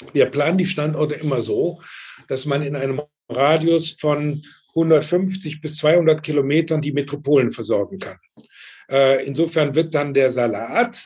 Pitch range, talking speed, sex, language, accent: 130-155 Hz, 135 wpm, male, German, German